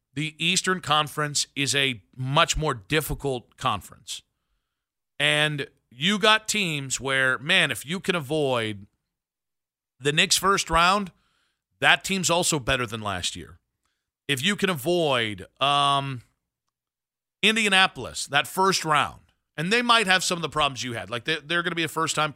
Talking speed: 155 wpm